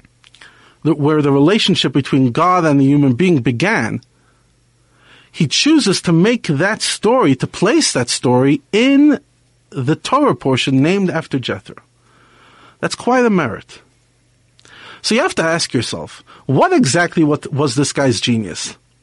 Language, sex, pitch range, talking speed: English, male, 125-165 Hz, 135 wpm